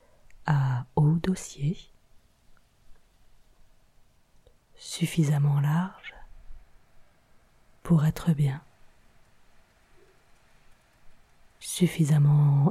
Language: French